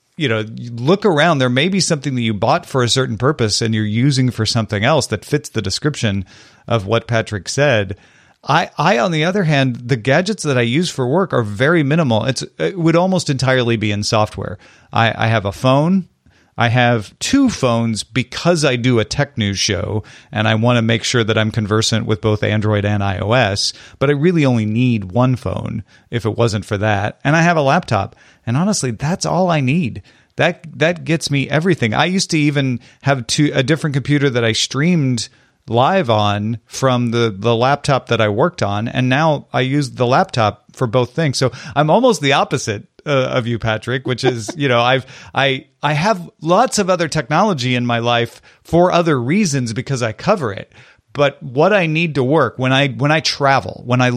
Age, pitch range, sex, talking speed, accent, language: 40-59, 115-150 Hz, male, 205 wpm, American, English